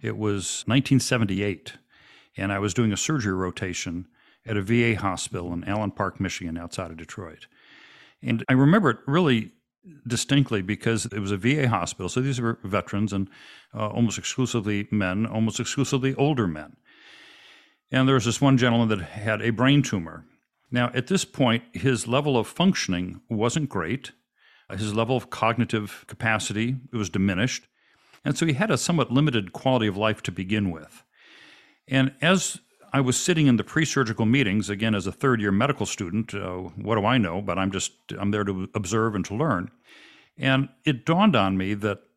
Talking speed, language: 175 wpm, English